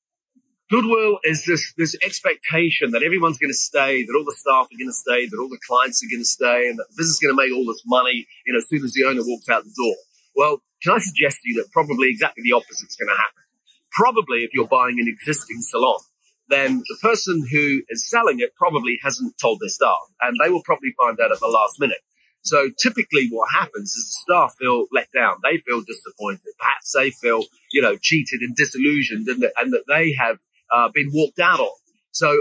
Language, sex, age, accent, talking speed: English, male, 30-49, British, 215 wpm